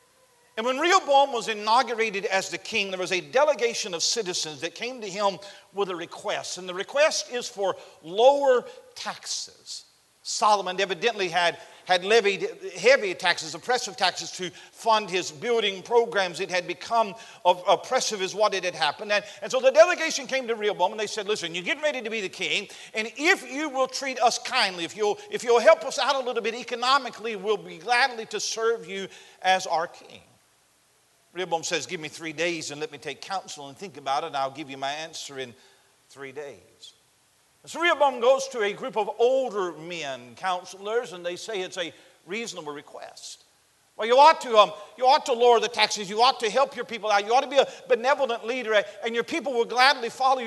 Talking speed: 200 wpm